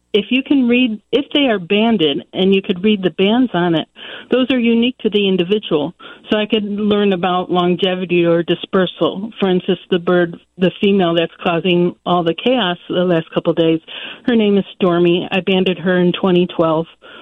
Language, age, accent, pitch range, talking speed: English, 50-69, American, 175-215 Hz, 190 wpm